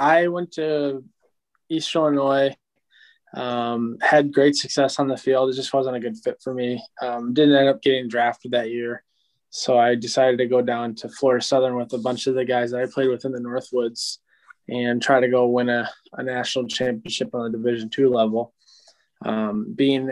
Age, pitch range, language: 20-39, 120-135 Hz, English